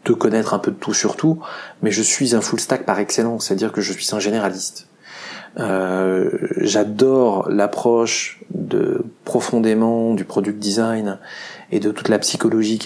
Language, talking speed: French, 170 wpm